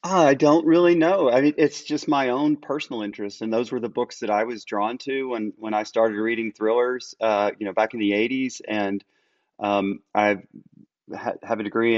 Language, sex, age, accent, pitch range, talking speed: English, male, 30-49, American, 100-110 Hz, 205 wpm